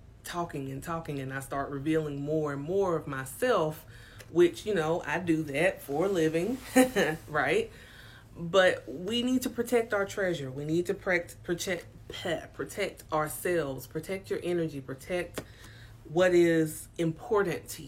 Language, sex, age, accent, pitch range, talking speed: English, female, 30-49, American, 115-170 Hz, 150 wpm